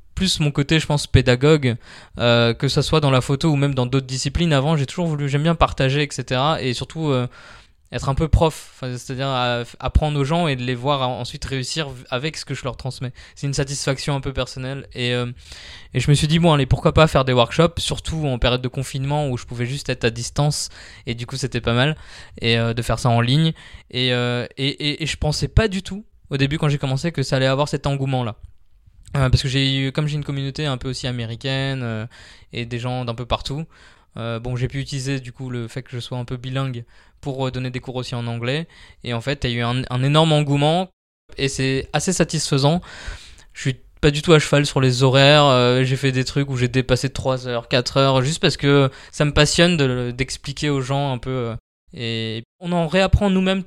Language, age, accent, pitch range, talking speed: French, 20-39, French, 125-145 Hz, 240 wpm